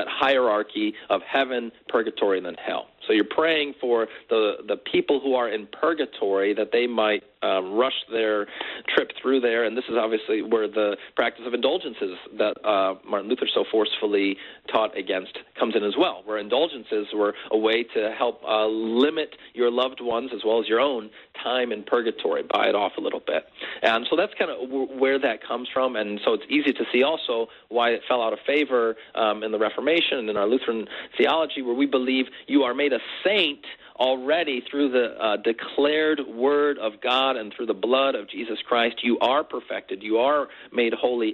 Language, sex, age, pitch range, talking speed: English, male, 40-59, 115-150 Hz, 195 wpm